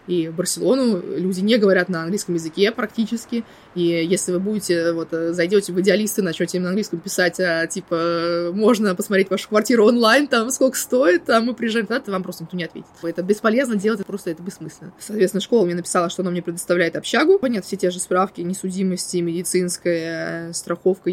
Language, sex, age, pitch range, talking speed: Russian, female, 20-39, 180-210 Hz, 190 wpm